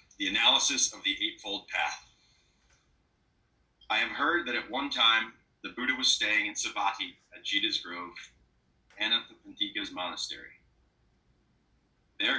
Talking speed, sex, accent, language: 135 wpm, male, American, English